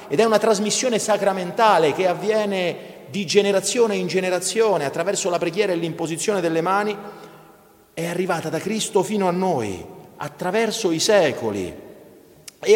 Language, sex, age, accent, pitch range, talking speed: Italian, male, 40-59, native, 140-200 Hz, 135 wpm